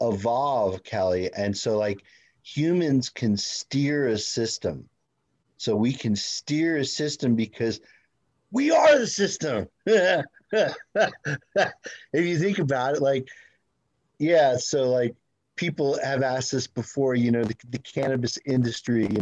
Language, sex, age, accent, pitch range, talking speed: English, male, 40-59, American, 115-145 Hz, 130 wpm